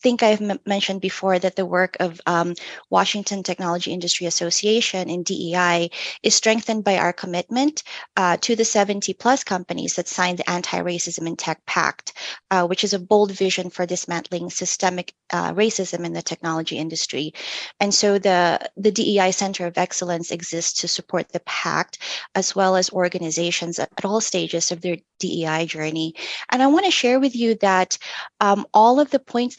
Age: 20-39